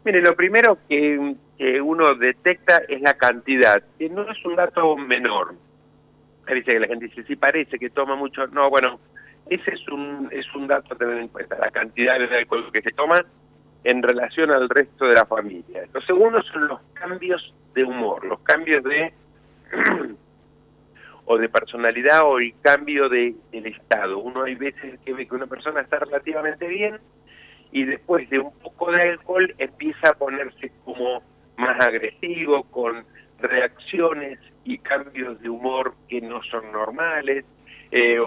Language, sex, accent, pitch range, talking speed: Spanish, male, Argentinian, 125-155 Hz, 165 wpm